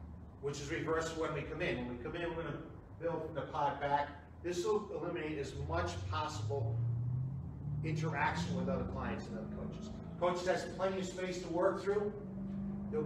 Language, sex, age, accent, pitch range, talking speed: English, male, 40-59, American, 120-165 Hz, 185 wpm